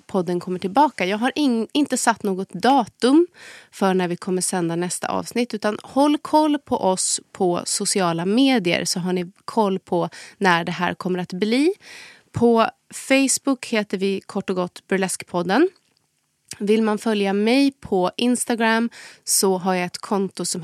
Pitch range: 185-225 Hz